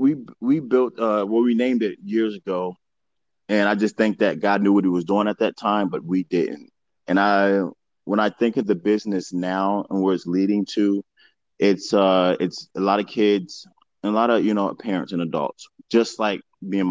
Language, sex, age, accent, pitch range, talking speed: English, male, 30-49, American, 90-110 Hz, 220 wpm